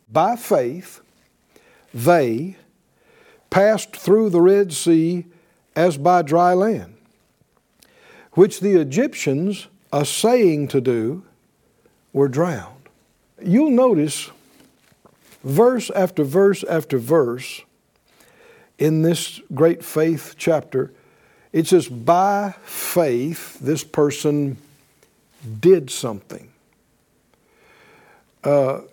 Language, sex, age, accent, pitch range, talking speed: English, male, 60-79, American, 140-195 Hz, 85 wpm